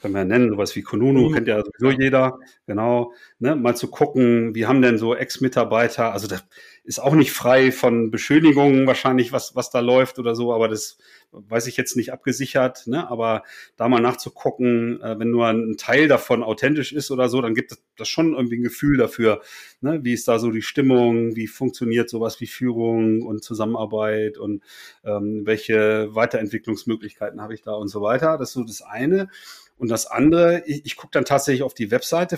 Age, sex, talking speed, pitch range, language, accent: 30-49, male, 195 wpm, 115-140 Hz, German, German